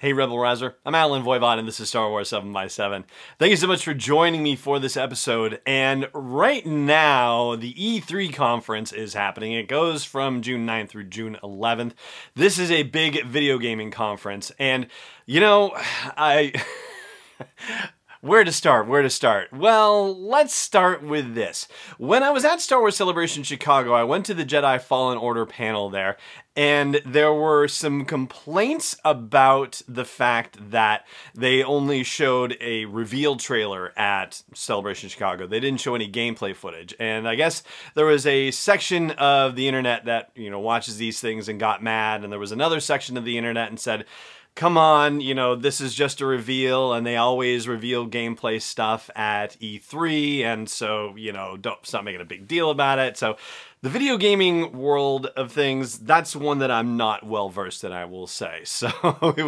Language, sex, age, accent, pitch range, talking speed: English, male, 30-49, American, 115-150 Hz, 180 wpm